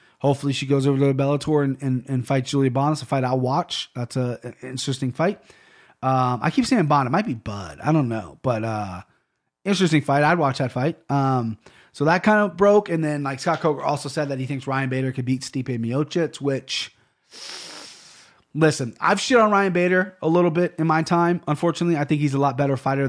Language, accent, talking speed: English, American, 225 wpm